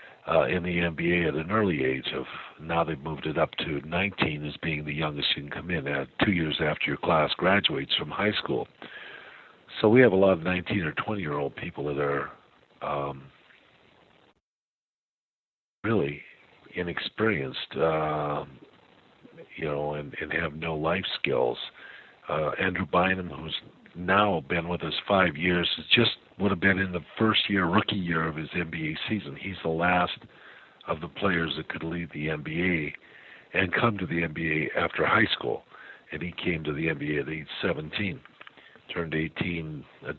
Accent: American